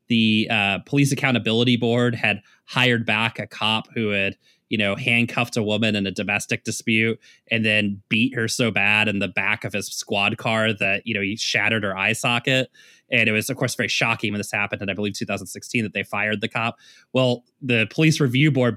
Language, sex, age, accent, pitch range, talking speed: English, male, 20-39, American, 110-135 Hz, 210 wpm